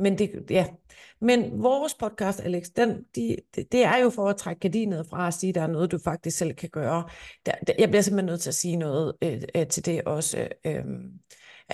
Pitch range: 155-190 Hz